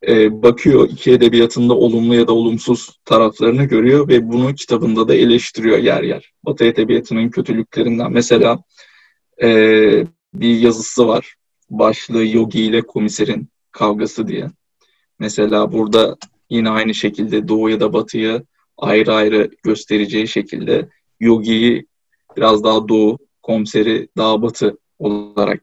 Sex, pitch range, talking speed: male, 110-125 Hz, 115 wpm